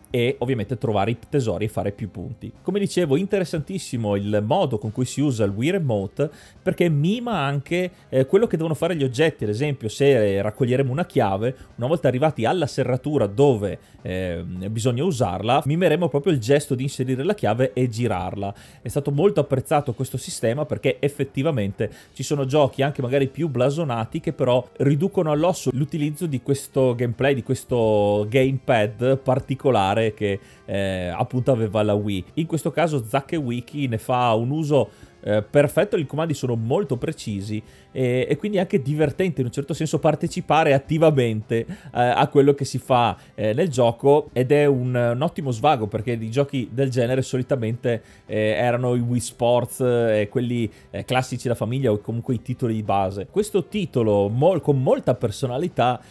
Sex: male